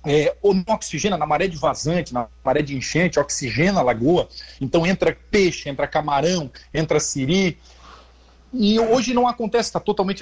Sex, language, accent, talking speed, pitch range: male, Portuguese, Brazilian, 160 wpm, 155-195 Hz